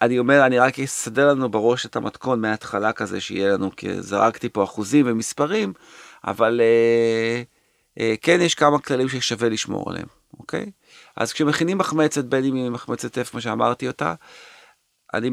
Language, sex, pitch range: Hebrew, male, 105-140 Hz